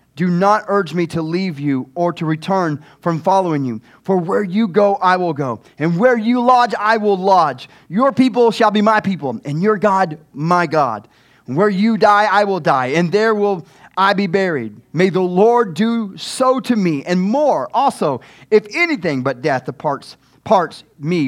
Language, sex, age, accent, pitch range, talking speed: English, male, 30-49, American, 160-220 Hz, 190 wpm